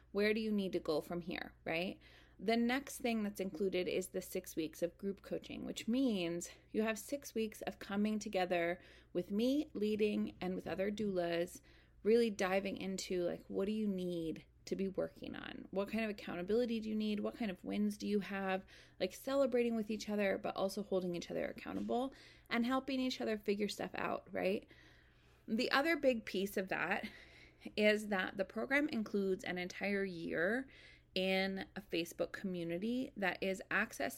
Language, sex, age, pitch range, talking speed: English, female, 30-49, 180-220 Hz, 180 wpm